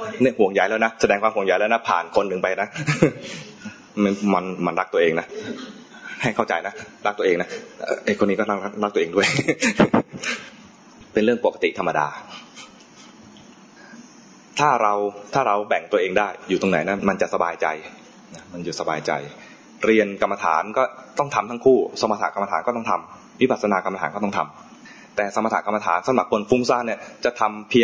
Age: 20-39